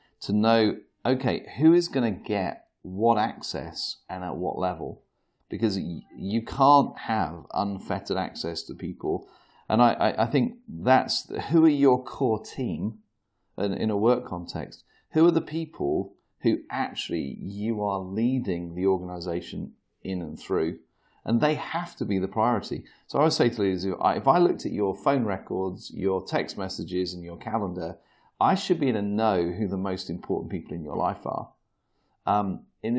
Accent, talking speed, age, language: British, 170 wpm, 40-59, English